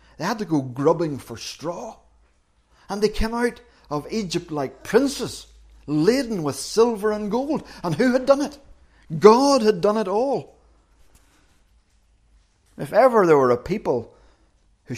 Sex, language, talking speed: male, English, 150 wpm